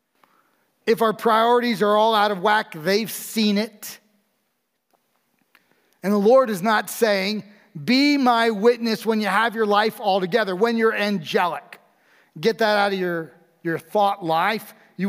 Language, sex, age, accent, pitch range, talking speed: English, male, 40-59, American, 170-215 Hz, 155 wpm